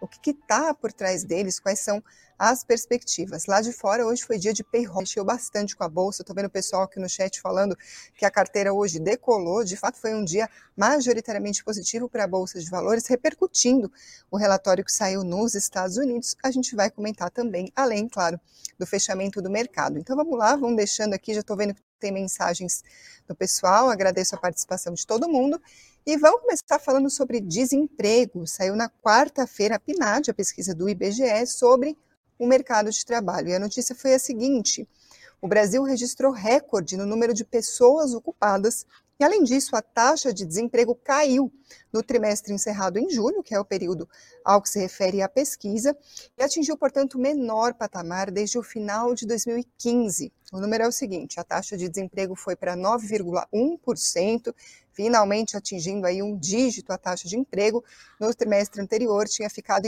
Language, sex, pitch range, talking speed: Portuguese, female, 195-245 Hz, 180 wpm